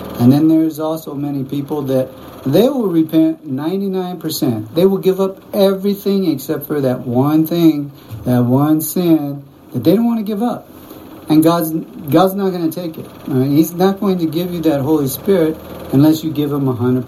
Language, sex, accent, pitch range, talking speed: English, male, American, 130-185 Hz, 195 wpm